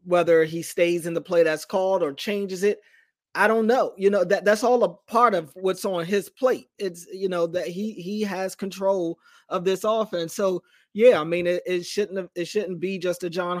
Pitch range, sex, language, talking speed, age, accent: 170-205 Hz, male, English, 225 wpm, 20-39, American